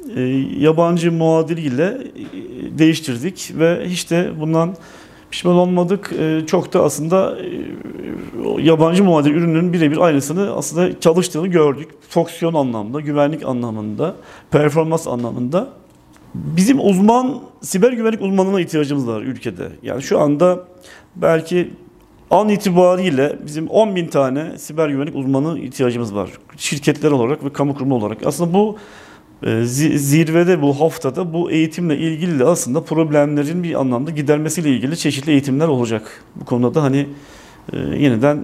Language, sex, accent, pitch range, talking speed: Turkish, male, native, 140-180 Hz, 120 wpm